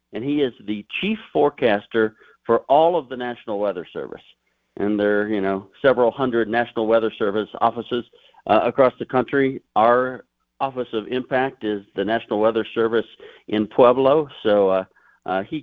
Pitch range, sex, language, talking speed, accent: 100-130 Hz, male, English, 155 wpm, American